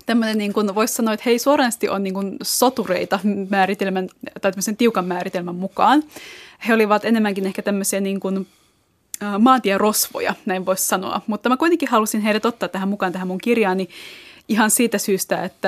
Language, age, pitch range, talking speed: Finnish, 20-39, 185-235 Hz, 165 wpm